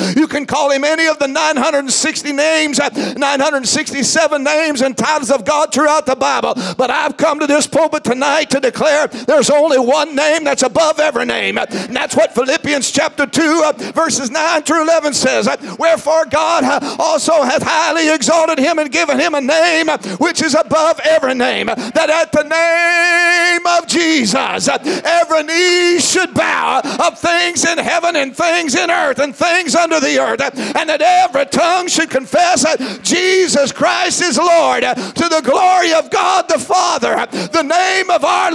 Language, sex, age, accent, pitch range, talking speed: English, male, 50-69, American, 295-350 Hz, 165 wpm